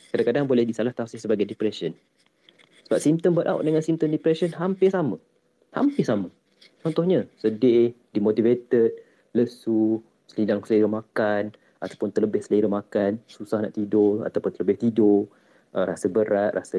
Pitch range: 100-125 Hz